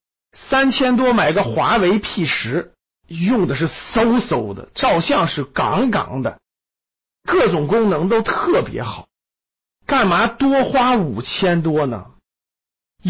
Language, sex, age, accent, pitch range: Chinese, male, 50-69, native, 150-235 Hz